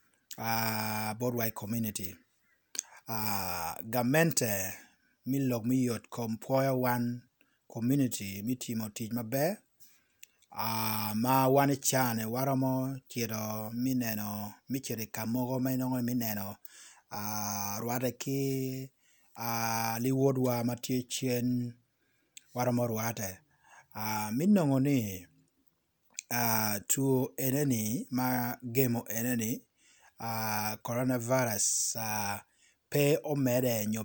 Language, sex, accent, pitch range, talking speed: English, male, Nigerian, 115-130 Hz, 80 wpm